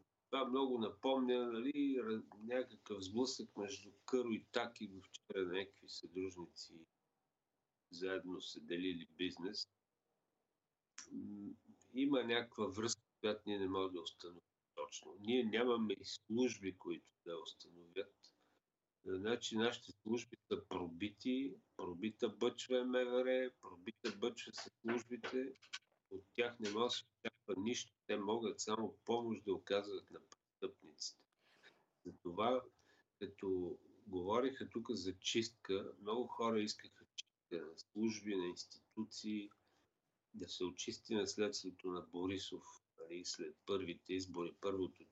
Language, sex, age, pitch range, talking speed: Bulgarian, male, 50-69, 95-120 Hz, 115 wpm